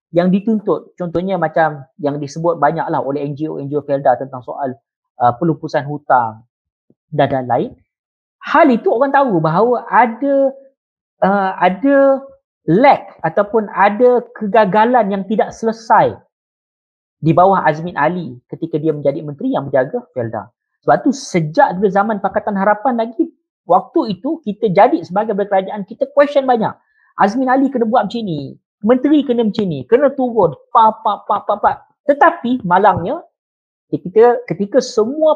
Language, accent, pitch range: Chinese, Indonesian, 165-250 Hz